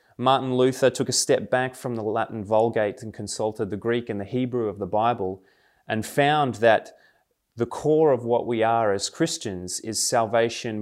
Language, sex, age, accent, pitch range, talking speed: English, male, 20-39, Australian, 105-125 Hz, 185 wpm